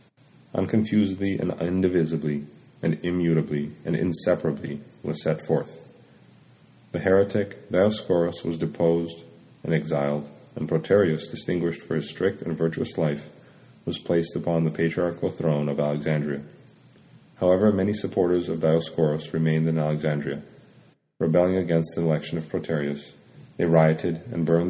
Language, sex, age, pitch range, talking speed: English, male, 40-59, 75-90 Hz, 125 wpm